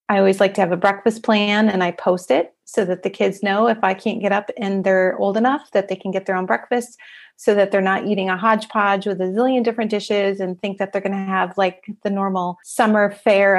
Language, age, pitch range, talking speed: English, 30-49, 190-220 Hz, 250 wpm